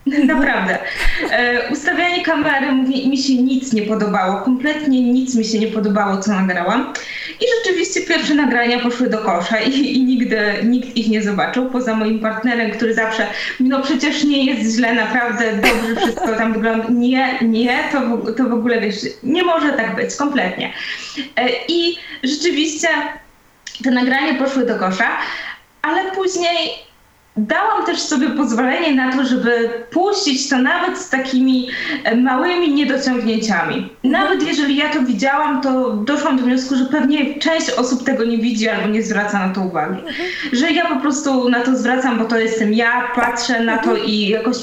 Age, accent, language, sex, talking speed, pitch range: 20-39, native, Polish, female, 160 wpm, 230-285 Hz